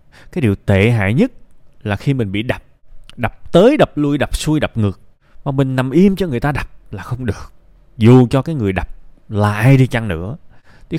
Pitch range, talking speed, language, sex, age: 105-155 Hz, 220 wpm, Vietnamese, male, 20-39